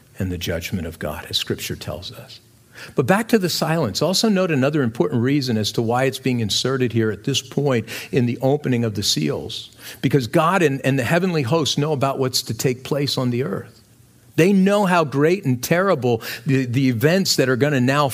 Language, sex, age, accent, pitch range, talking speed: English, male, 50-69, American, 115-155 Hz, 215 wpm